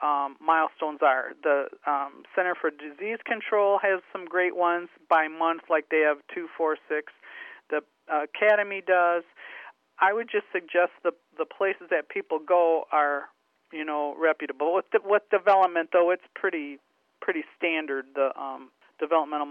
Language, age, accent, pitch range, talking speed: English, 50-69, American, 155-190 Hz, 155 wpm